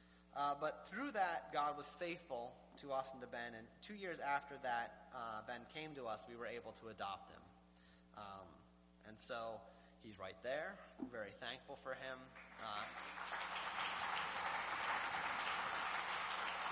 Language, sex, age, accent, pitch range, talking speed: English, male, 20-39, American, 105-155 Hz, 145 wpm